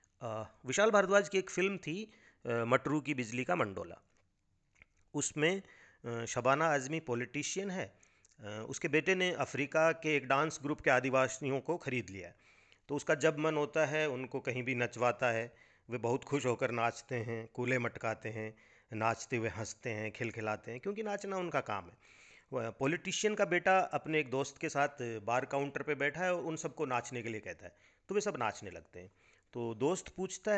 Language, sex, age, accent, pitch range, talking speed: Hindi, male, 40-59, native, 115-160 Hz, 175 wpm